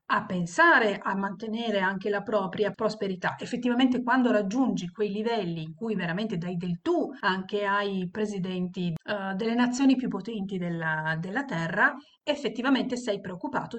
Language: Italian